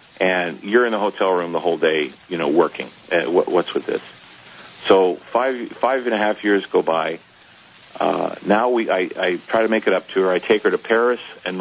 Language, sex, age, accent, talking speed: English, male, 50-69, American, 235 wpm